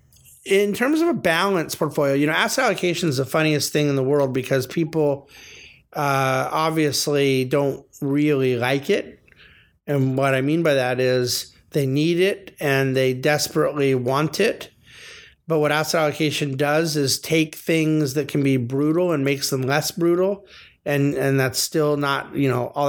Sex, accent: male, American